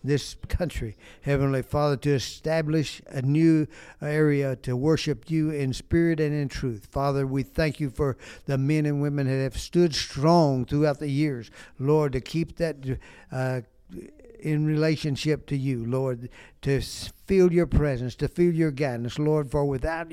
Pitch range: 130-155 Hz